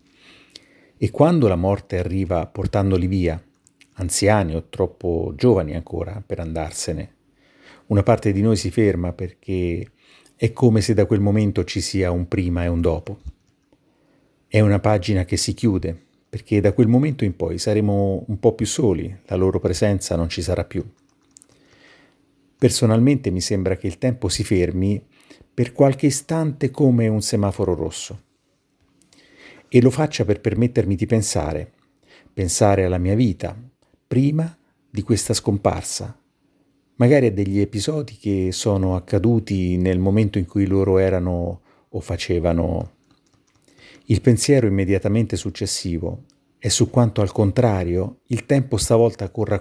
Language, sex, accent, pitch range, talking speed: Italian, male, native, 95-115 Hz, 140 wpm